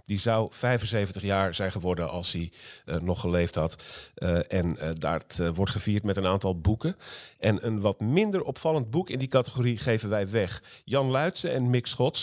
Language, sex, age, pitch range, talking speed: Dutch, male, 40-59, 95-125 Hz, 195 wpm